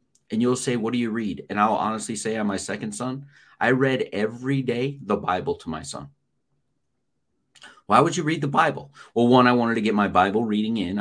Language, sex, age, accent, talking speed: English, male, 40-59, American, 220 wpm